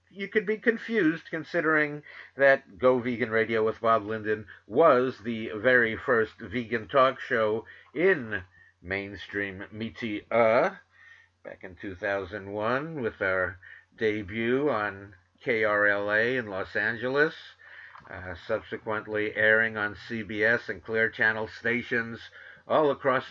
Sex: male